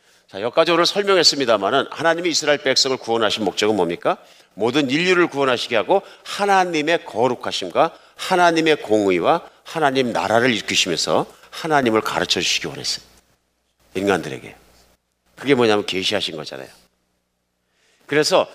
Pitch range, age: 110-175 Hz, 50-69